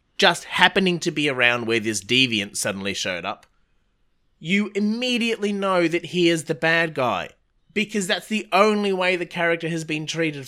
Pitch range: 130-185 Hz